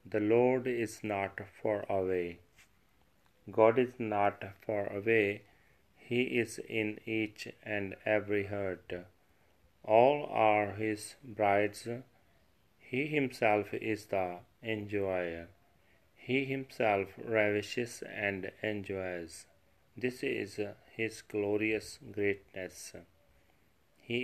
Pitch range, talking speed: 95-115 Hz, 95 wpm